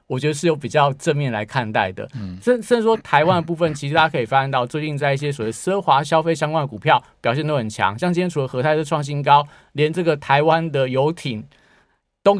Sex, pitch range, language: male, 125-170 Hz, Chinese